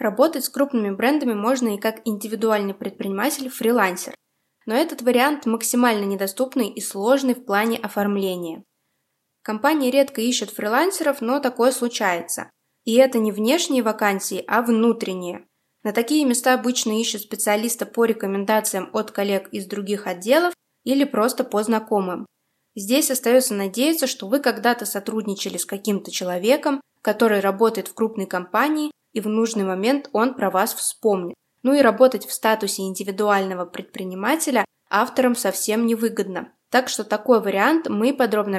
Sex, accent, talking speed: female, native, 140 wpm